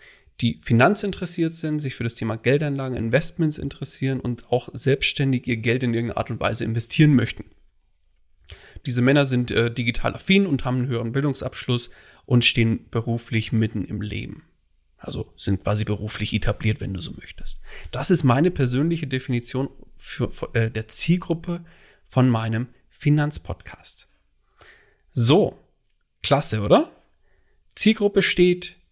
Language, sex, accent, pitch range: German, male, German, 110-145 Hz